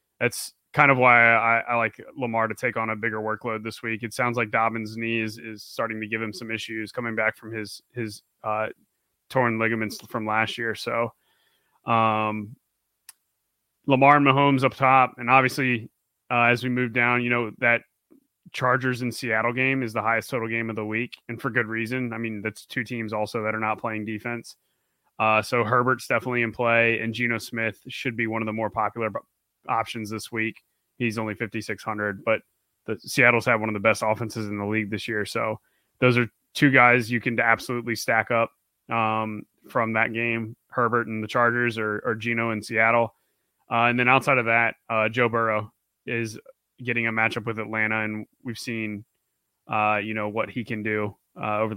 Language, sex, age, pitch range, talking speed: English, male, 30-49, 110-120 Hz, 195 wpm